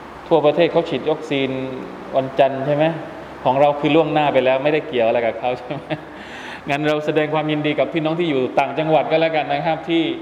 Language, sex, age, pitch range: Thai, male, 20-39, 130-155 Hz